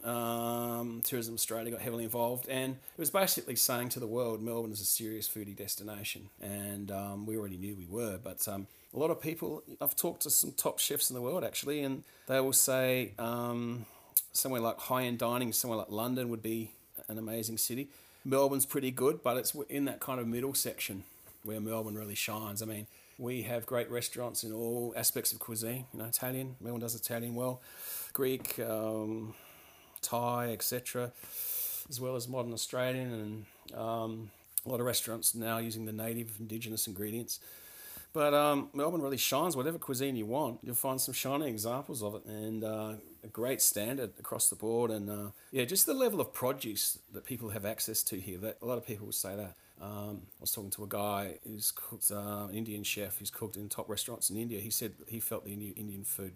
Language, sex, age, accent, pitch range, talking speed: English, male, 30-49, Australian, 105-125 Hz, 200 wpm